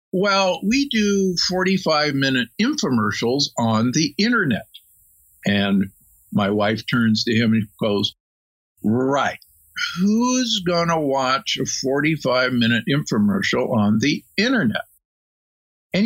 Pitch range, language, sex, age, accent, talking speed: 110-180 Hz, English, male, 50-69, American, 105 wpm